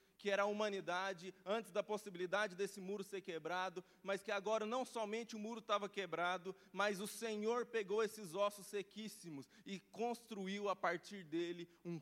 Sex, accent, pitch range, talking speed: male, Brazilian, 185-220 Hz, 165 wpm